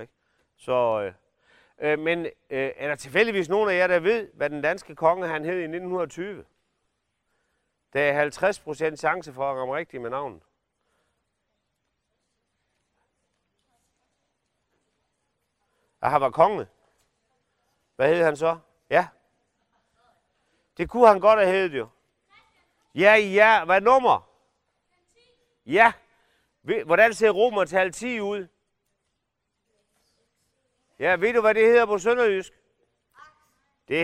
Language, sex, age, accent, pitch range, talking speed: Danish, male, 40-59, native, 170-235 Hz, 110 wpm